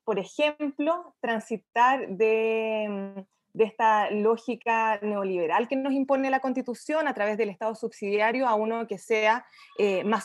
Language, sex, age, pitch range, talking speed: Spanish, female, 20-39, 200-265 Hz, 140 wpm